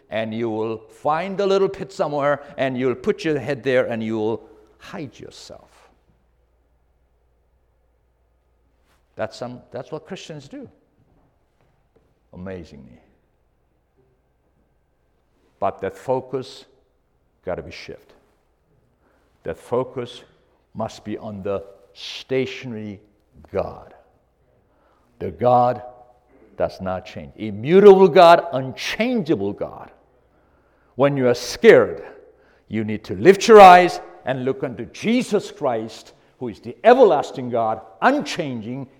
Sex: male